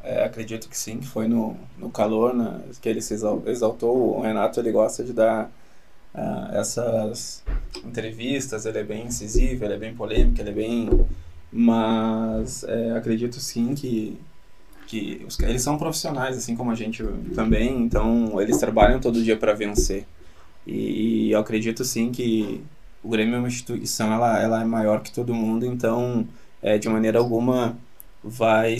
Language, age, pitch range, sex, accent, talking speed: Portuguese, 20-39, 110-120 Hz, male, Brazilian, 165 wpm